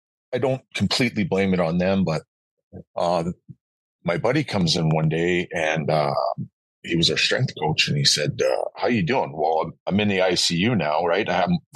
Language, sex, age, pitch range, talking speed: English, male, 40-59, 85-115 Hz, 205 wpm